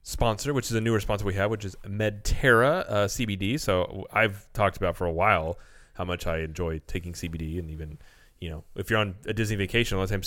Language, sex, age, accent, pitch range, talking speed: English, male, 30-49, American, 90-110 Hz, 230 wpm